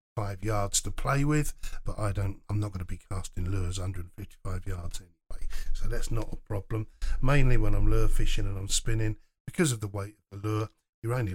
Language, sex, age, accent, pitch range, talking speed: English, male, 50-69, British, 100-140 Hz, 210 wpm